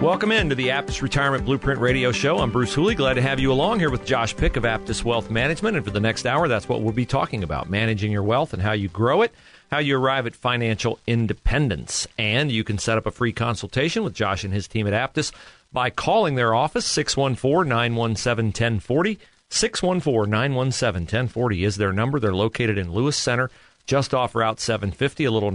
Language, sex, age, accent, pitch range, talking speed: English, male, 40-59, American, 110-135 Hz, 210 wpm